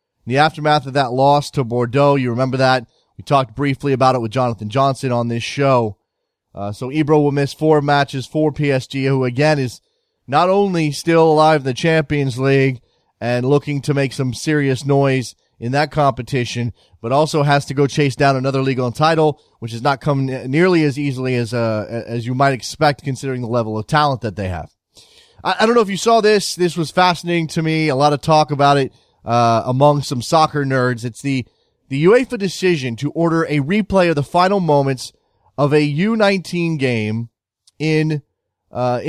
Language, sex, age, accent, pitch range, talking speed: English, male, 30-49, American, 130-160 Hz, 200 wpm